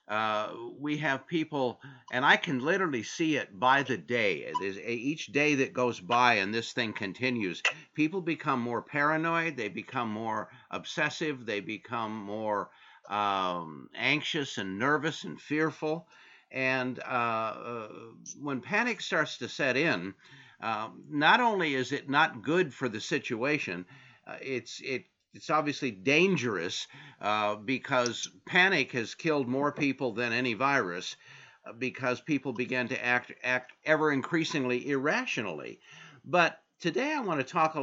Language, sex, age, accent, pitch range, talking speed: English, male, 50-69, American, 120-150 Hz, 150 wpm